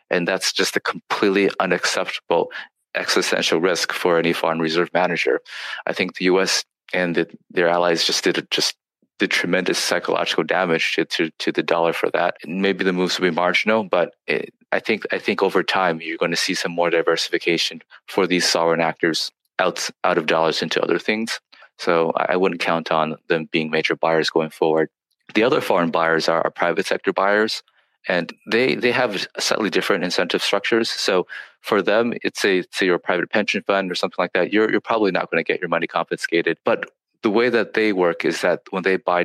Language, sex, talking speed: English, male, 205 wpm